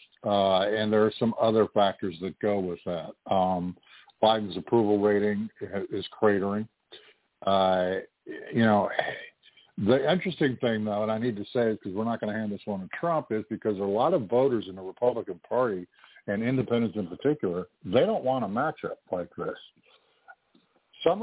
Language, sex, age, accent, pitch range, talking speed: English, male, 50-69, American, 95-115 Hz, 170 wpm